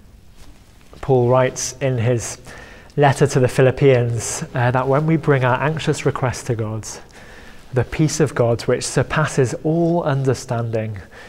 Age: 20-39